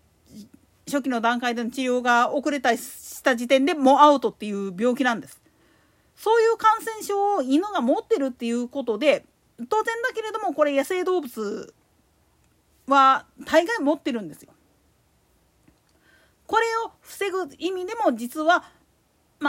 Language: Japanese